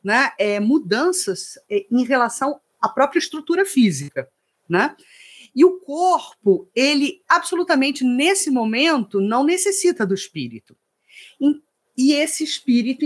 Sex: female